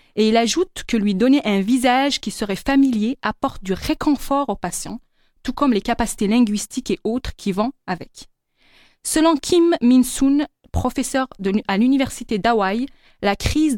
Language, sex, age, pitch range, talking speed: French, female, 20-39, 210-265 Hz, 155 wpm